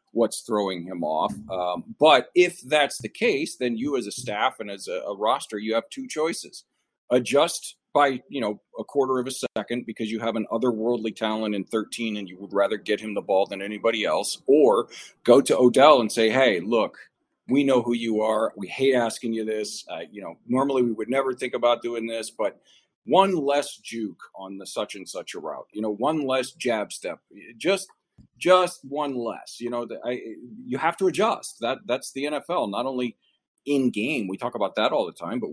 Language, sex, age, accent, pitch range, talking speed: English, male, 40-59, American, 110-135 Hz, 215 wpm